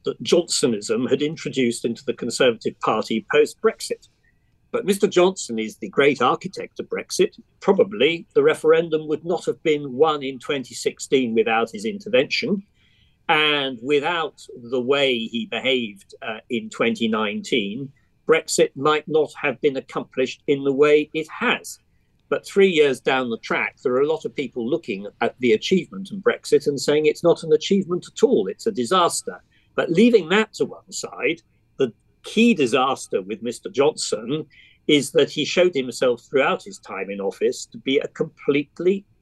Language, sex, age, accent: English, male, 50-69, British